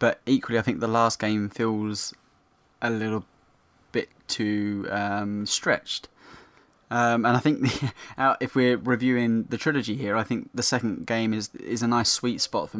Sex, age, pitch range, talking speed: male, 20-39, 105-125 Hz, 175 wpm